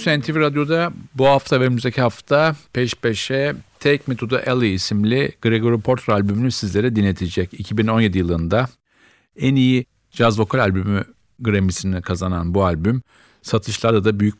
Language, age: Turkish, 50-69